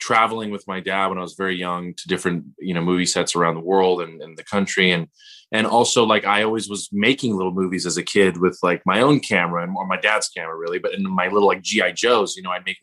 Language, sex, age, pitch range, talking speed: English, male, 20-39, 95-115 Hz, 260 wpm